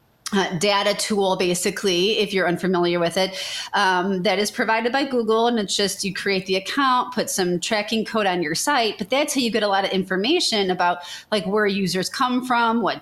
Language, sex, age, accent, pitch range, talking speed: English, female, 30-49, American, 190-235 Hz, 210 wpm